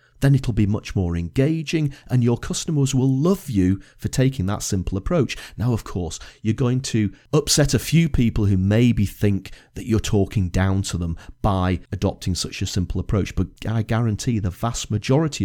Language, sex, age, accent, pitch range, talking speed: English, male, 40-59, British, 95-135 Hz, 185 wpm